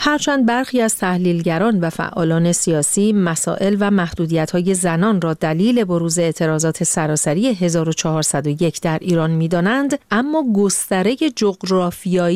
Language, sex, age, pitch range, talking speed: Persian, female, 40-59, 170-225 Hz, 110 wpm